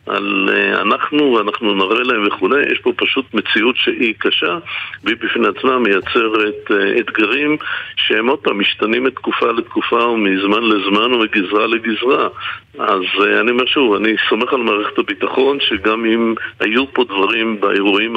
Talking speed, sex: 140 wpm, male